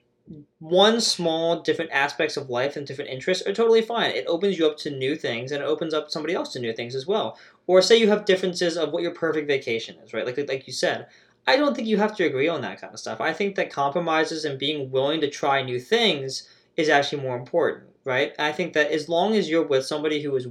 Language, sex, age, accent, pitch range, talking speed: English, male, 20-39, American, 140-170 Hz, 250 wpm